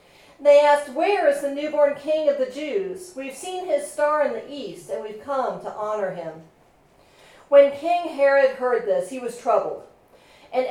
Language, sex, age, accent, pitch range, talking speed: English, female, 40-59, American, 205-290 Hz, 180 wpm